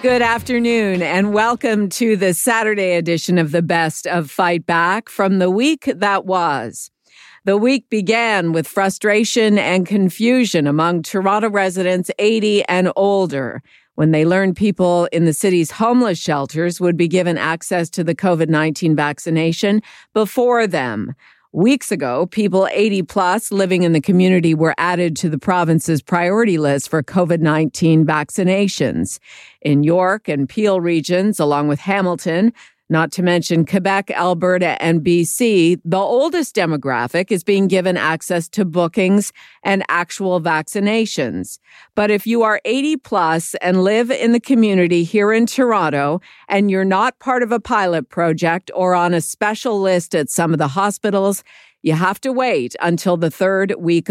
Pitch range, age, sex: 165-205 Hz, 50-69, female